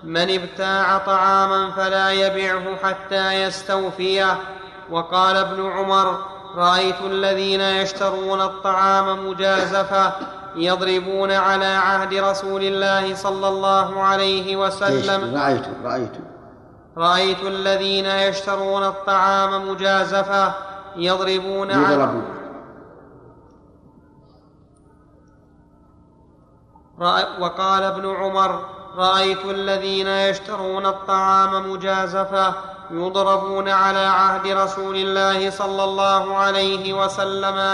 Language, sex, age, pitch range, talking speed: Arabic, male, 30-49, 190-195 Hz, 80 wpm